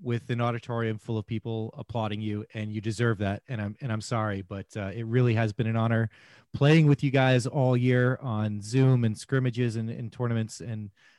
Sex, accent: male, American